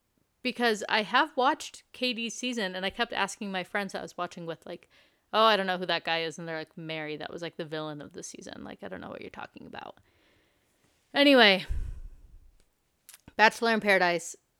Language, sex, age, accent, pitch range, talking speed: English, female, 30-49, American, 165-220 Hz, 205 wpm